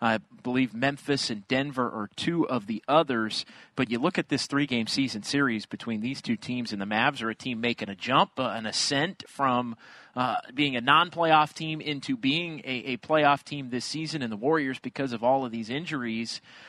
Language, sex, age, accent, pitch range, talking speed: English, male, 30-49, American, 115-145 Hz, 210 wpm